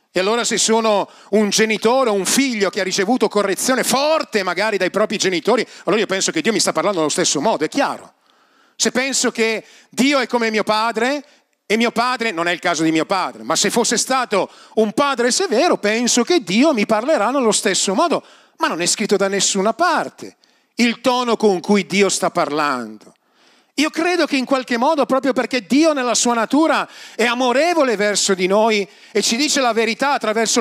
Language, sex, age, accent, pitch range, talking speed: Italian, male, 40-59, native, 170-240 Hz, 200 wpm